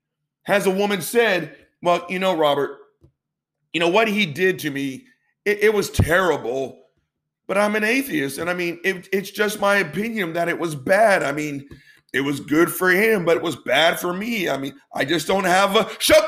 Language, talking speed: English, 205 wpm